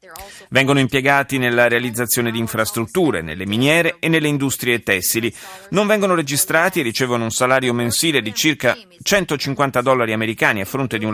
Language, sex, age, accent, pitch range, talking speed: Italian, male, 30-49, native, 110-145 Hz, 155 wpm